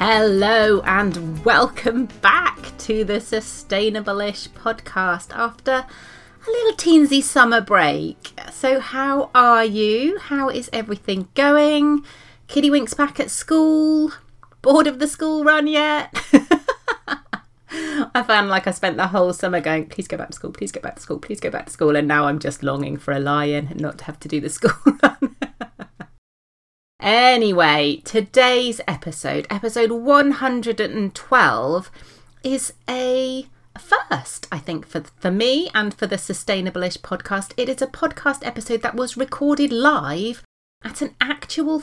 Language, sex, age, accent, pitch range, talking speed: English, female, 30-49, British, 195-280 Hz, 150 wpm